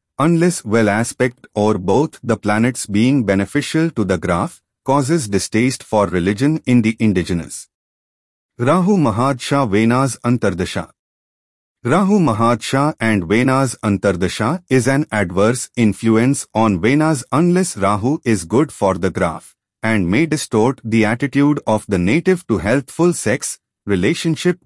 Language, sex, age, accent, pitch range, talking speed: English, male, 30-49, Indian, 105-155 Hz, 130 wpm